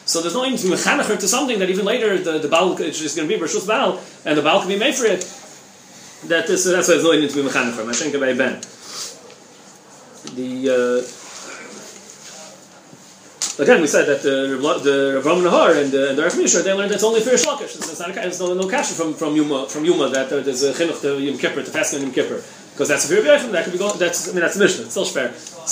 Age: 30-49